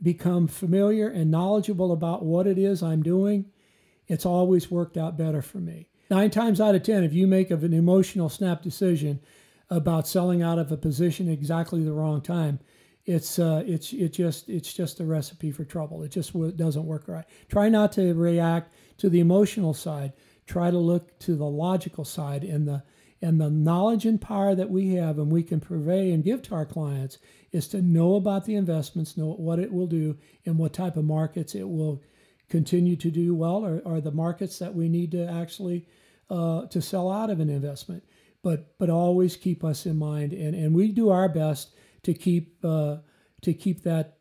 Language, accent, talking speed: English, American, 200 wpm